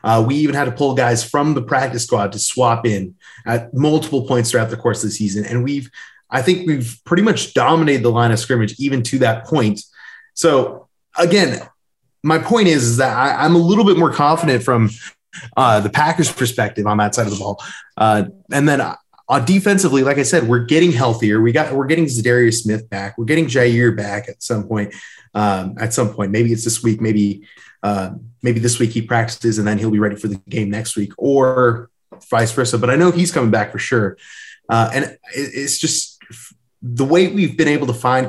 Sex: male